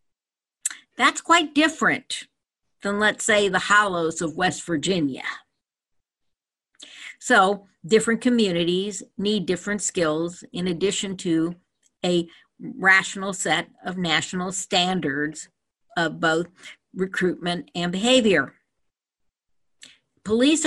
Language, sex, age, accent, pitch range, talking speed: English, female, 50-69, American, 175-215 Hz, 95 wpm